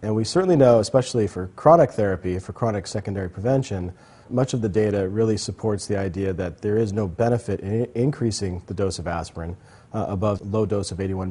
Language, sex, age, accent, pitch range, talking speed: English, male, 40-59, American, 95-115 Hz, 195 wpm